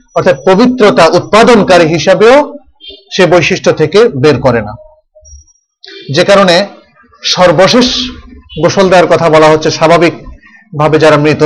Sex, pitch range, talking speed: male, 140-205 Hz, 90 wpm